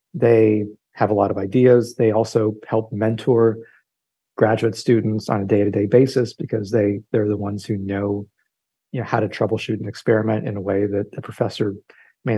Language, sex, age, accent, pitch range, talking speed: English, male, 40-59, American, 105-125 Hz, 185 wpm